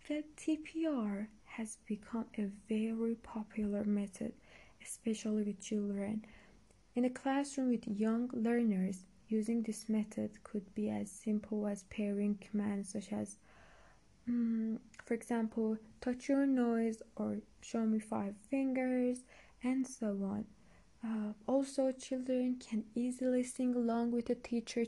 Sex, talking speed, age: female, 130 wpm, 20-39